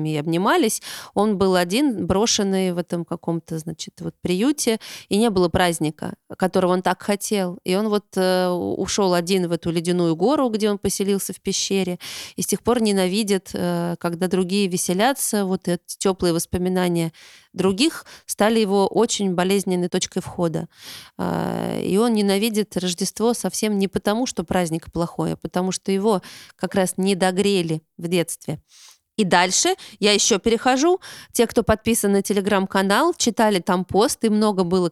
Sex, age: female, 20-39